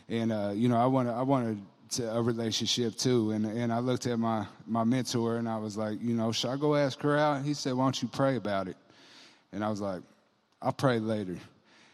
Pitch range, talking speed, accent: 110-130 Hz, 240 wpm, American